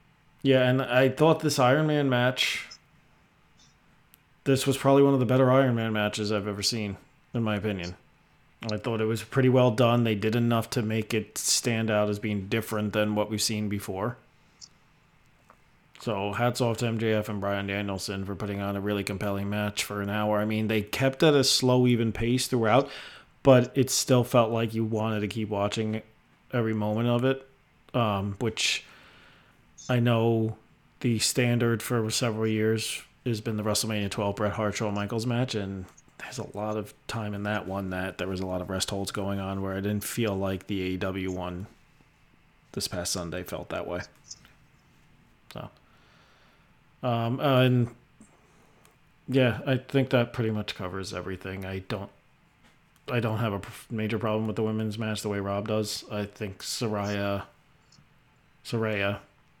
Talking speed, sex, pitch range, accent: 175 wpm, male, 100-125 Hz, American